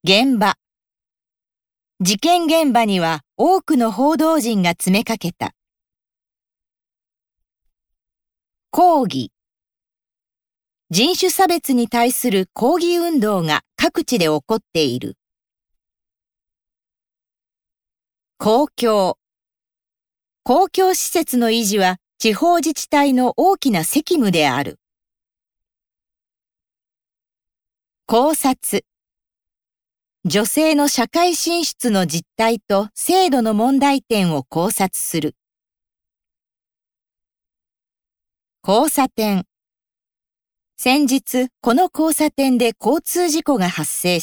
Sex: female